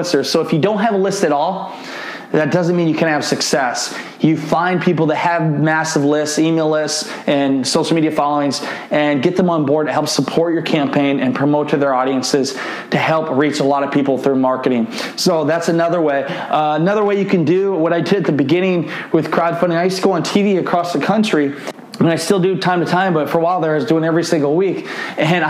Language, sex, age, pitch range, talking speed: English, male, 20-39, 145-175 Hz, 235 wpm